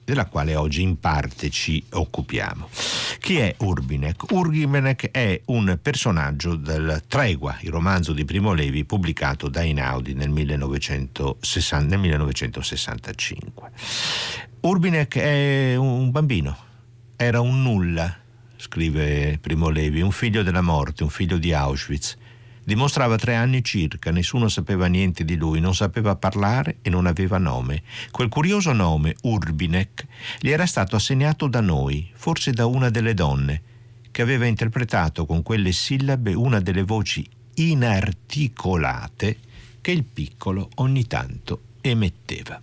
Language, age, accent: Italian, 60-79, native